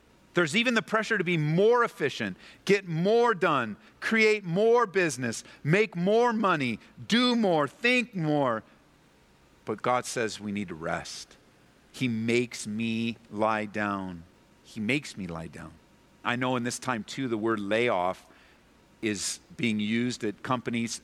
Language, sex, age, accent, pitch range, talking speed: English, male, 50-69, American, 115-155 Hz, 150 wpm